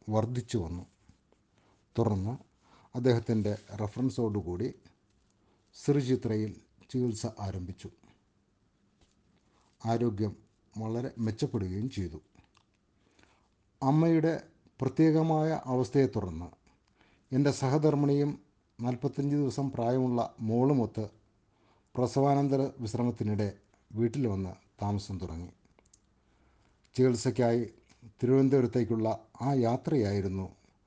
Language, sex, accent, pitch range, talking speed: Malayalam, male, native, 100-125 Hz, 60 wpm